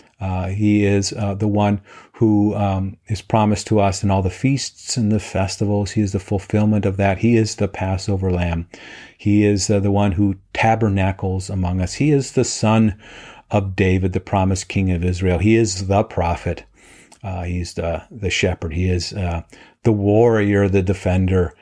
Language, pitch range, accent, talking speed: English, 95-115 Hz, American, 185 wpm